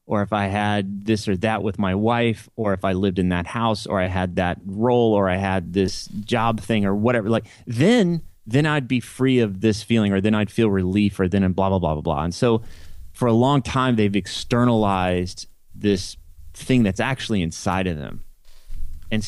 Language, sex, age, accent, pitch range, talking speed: English, male, 30-49, American, 95-120 Hz, 210 wpm